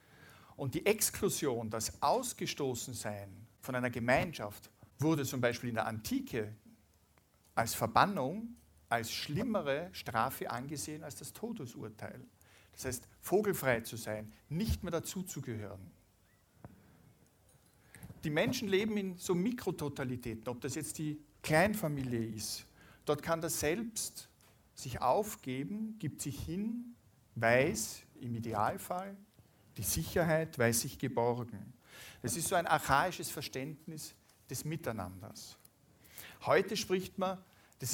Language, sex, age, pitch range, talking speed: German, male, 50-69, 110-155 Hz, 115 wpm